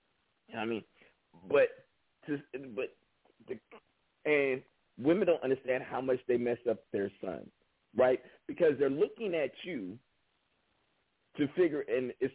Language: English